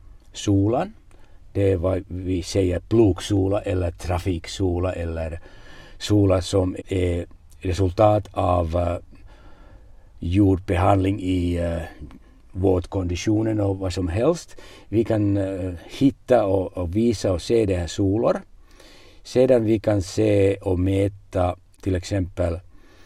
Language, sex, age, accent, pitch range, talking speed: Swedish, male, 60-79, Finnish, 95-110 Hz, 115 wpm